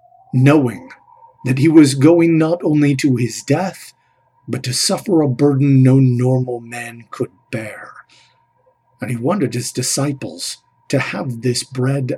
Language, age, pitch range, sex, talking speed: English, 50-69, 125-175 Hz, male, 145 wpm